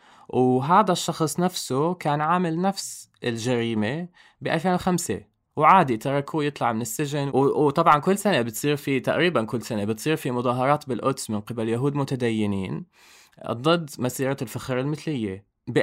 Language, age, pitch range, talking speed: Arabic, 20-39, 115-145 Hz, 135 wpm